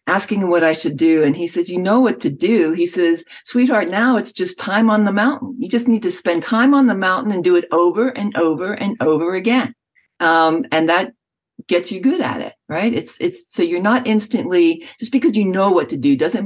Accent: American